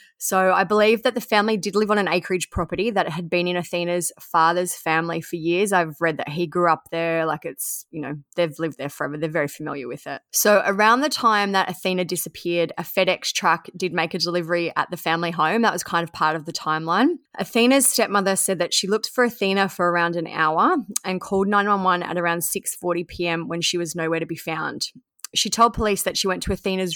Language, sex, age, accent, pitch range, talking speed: English, female, 20-39, Australian, 165-195 Hz, 225 wpm